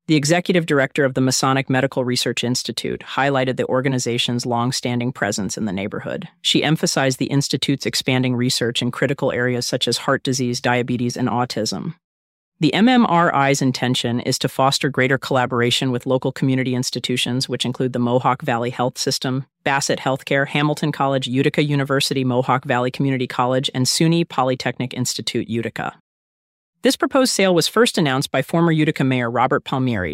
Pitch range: 125-150 Hz